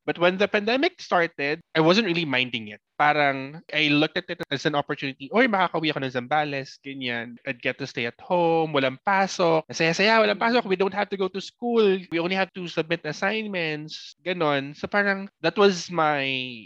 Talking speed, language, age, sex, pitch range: 190 wpm, Filipino, 20-39, male, 125-170 Hz